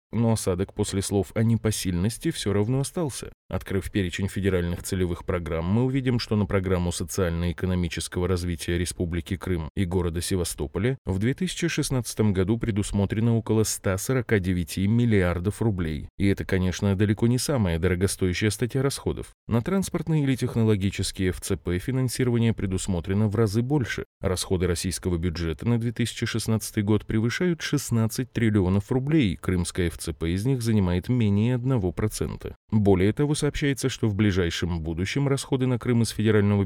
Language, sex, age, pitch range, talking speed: Russian, male, 20-39, 90-115 Hz, 135 wpm